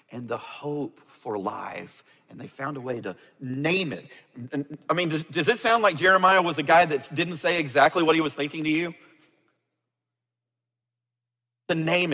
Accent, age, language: American, 40-59, English